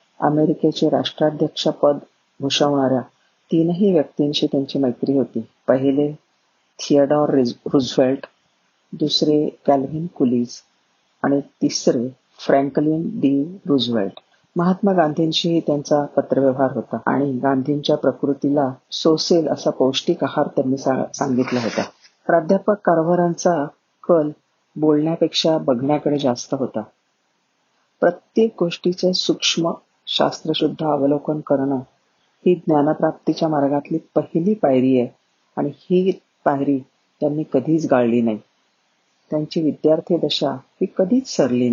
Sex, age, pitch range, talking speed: female, 50-69, 140-170 Hz, 70 wpm